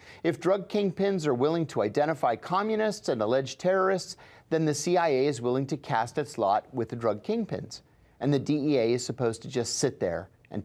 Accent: American